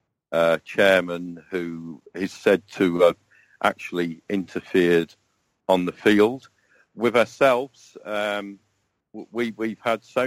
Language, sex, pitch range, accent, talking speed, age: English, male, 95-110 Hz, British, 105 wpm, 50-69